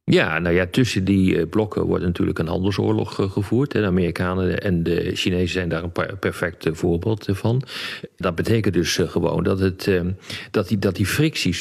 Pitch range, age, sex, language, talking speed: 85-110 Hz, 40-59, male, Dutch, 155 wpm